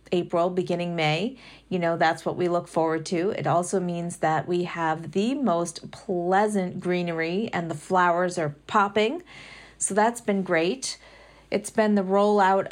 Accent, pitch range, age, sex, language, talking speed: American, 170-200 Hz, 40-59, female, English, 160 wpm